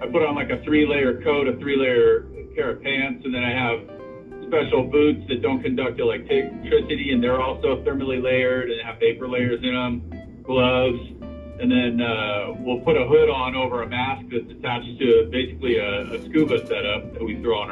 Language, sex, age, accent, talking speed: English, male, 40-59, American, 195 wpm